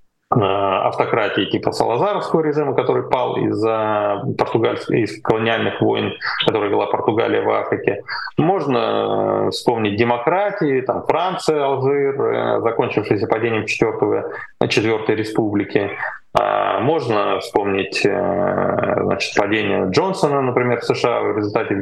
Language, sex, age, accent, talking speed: Russian, male, 20-39, native, 100 wpm